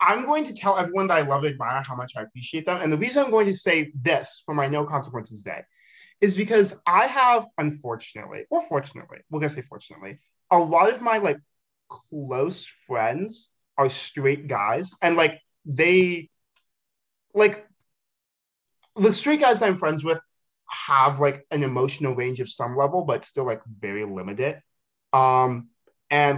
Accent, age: American, 20-39